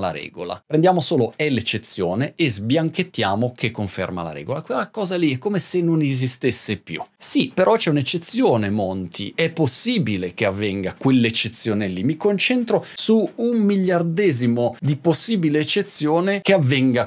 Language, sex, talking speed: Italian, male, 150 wpm